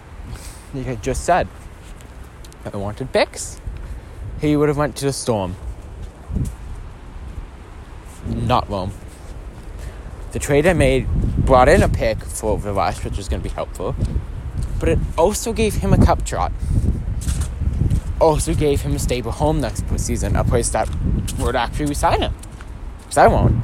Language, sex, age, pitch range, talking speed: English, male, 20-39, 85-125 Hz, 150 wpm